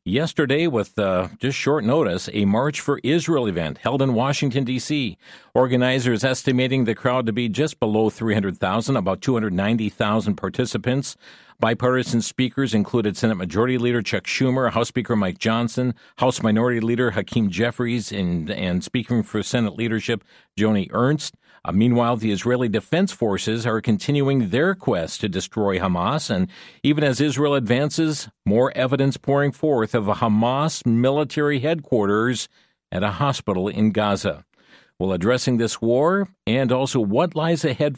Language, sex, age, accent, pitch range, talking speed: English, male, 50-69, American, 110-135 Hz, 145 wpm